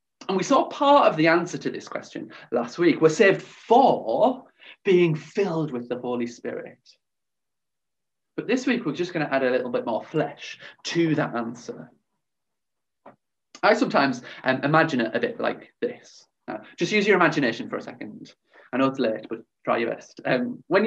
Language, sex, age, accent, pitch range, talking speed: English, male, 30-49, British, 155-245 Hz, 185 wpm